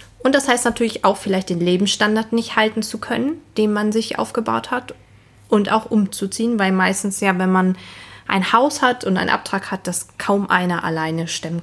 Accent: German